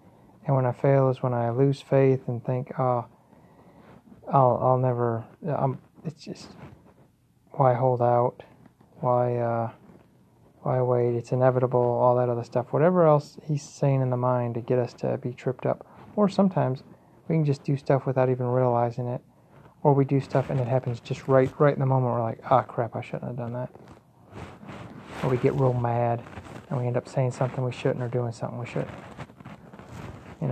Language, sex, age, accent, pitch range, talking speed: English, male, 30-49, American, 120-145 Hz, 195 wpm